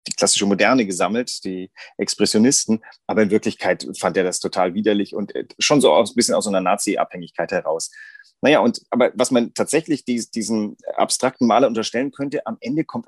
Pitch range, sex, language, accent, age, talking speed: 110-165 Hz, male, German, German, 30-49, 180 wpm